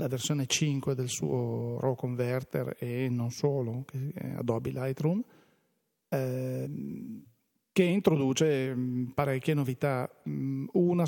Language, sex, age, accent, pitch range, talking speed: Italian, male, 40-59, native, 130-155 Hz, 105 wpm